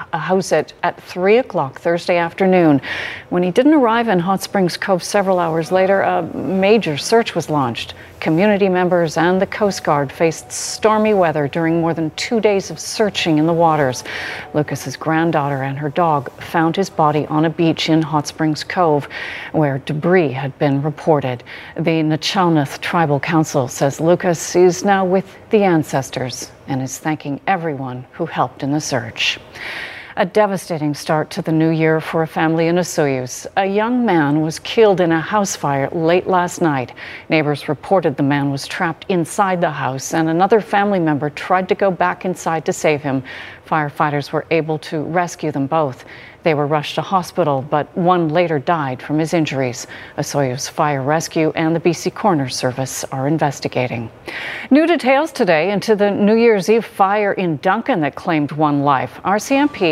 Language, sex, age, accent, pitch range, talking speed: English, female, 40-59, American, 150-190 Hz, 175 wpm